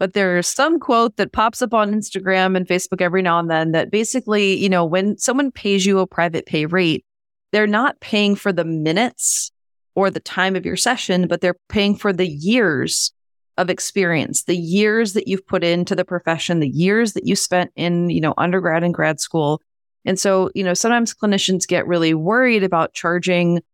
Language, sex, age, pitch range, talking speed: English, female, 30-49, 180-225 Hz, 195 wpm